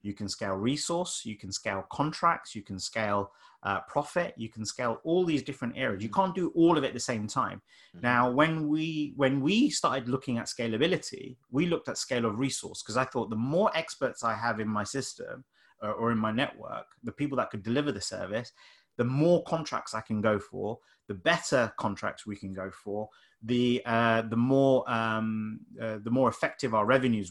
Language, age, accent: English, 30-49, British